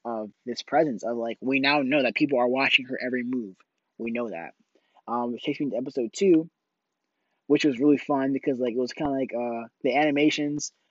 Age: 20-39